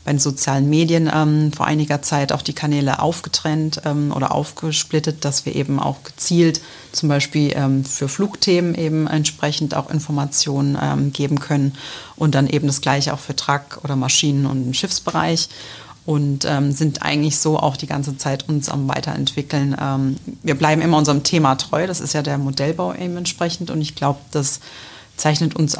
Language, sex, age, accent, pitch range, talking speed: German, female, 30-49, German, 140-155 Hz, 175 wpm